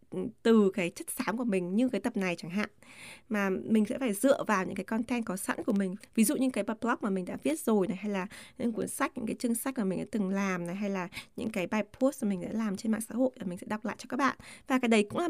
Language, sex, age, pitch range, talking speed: Vietnamese, female, 20-39, 195-250 Hz, 305 wpm